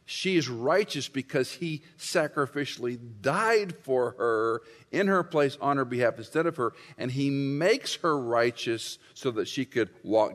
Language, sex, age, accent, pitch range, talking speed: English, male, 50-69, American, 100-140 Hz, 160 wpm